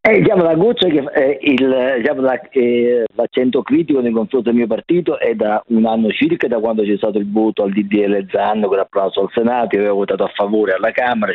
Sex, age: male, 50-69